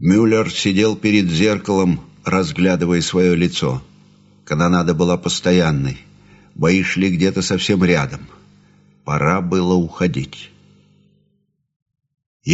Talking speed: 90 wpm